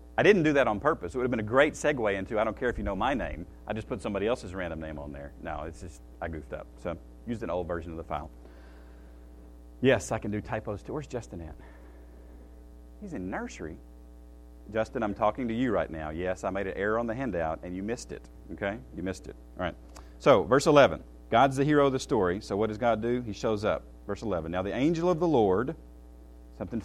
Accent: American